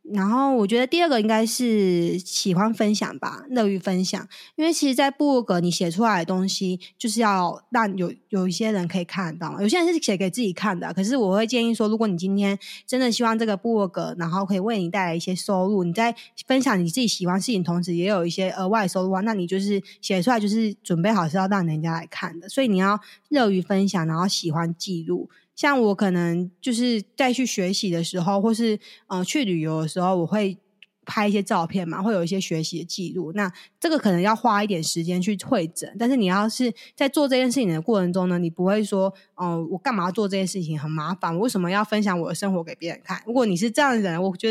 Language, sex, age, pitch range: Chinese, female, 20-39, 180-225 Hz